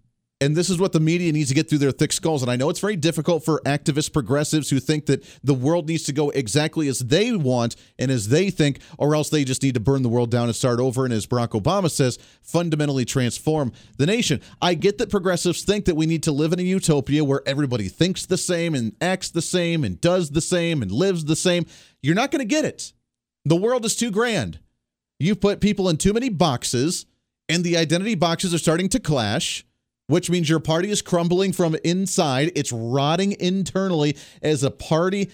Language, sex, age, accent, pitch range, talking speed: English, male, 40-59, American, 130-175 Hz, 220 wpm